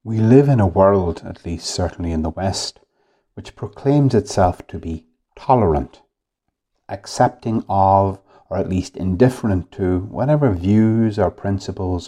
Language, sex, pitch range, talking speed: English, male, 90-130 Hz, 140 wpm